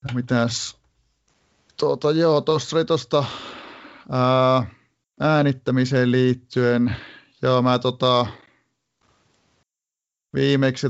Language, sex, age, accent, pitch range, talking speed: Finnish, male, 30-49, native, 115-130 Hz, 65 wpm